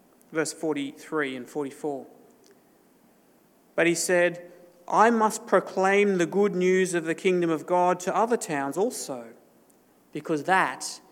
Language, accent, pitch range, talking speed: English, Australian, 150-180 Hz, 130 wpm